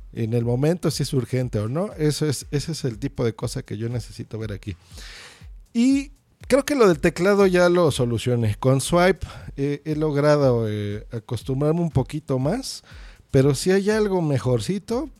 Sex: male